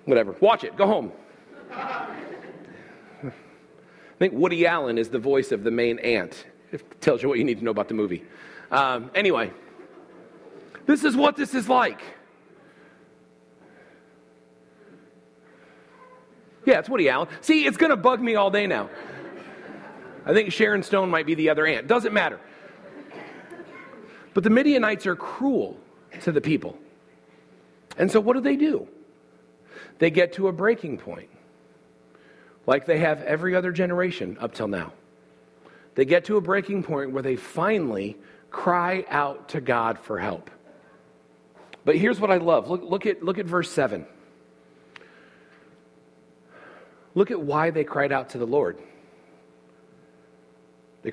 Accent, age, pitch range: American, 40-59, 130-205 Hz